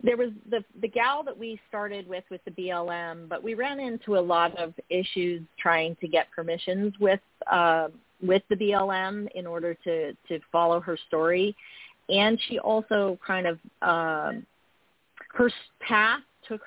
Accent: American